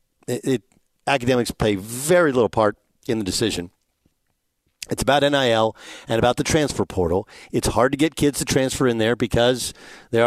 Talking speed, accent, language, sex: 160 wpm, American, English, male